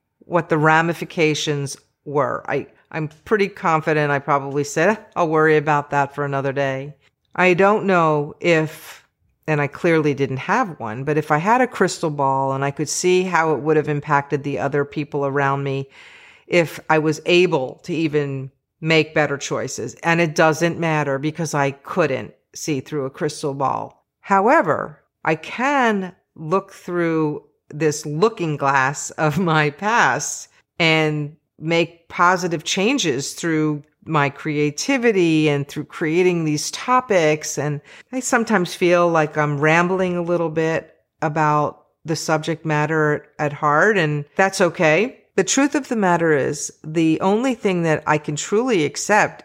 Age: 40-59